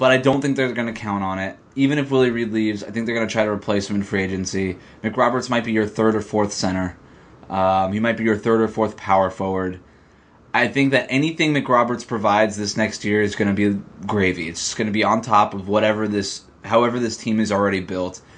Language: English